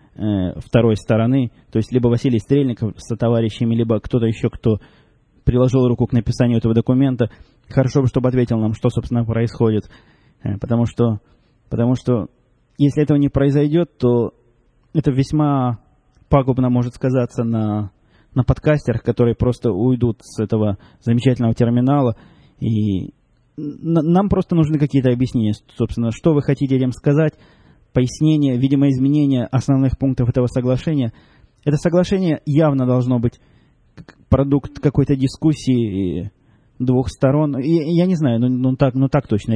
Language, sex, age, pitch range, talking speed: Russian, male, 20-39, 110-135 Hz, 140 wpm